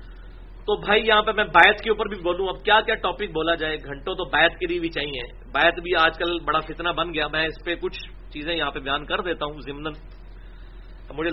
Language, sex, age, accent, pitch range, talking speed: English, male, 40-59, Indian, 150-205 Hz, 235 wpm